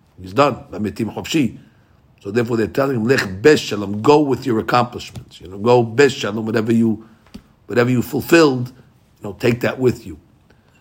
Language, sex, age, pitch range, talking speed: English, male, 60-79, 105-130 Hz, 145 wpm